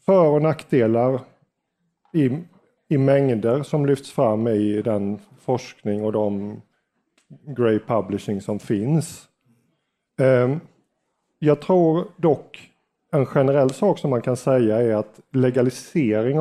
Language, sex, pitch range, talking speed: Swedish, male, 115-140 Hz, 115 wpm